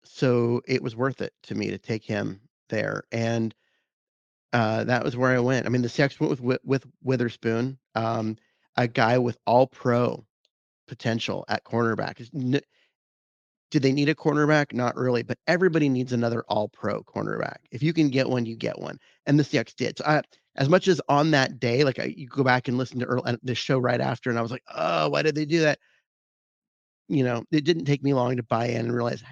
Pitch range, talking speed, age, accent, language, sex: 120-140 Hz, 215 wpm, 30-49, American, English, male